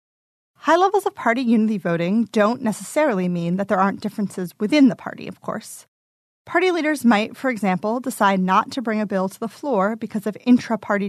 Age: 30-49